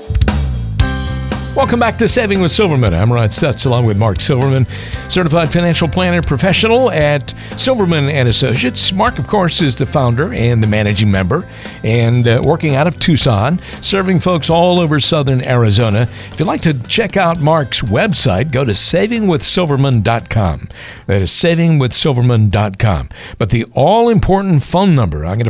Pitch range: 110-155 Hz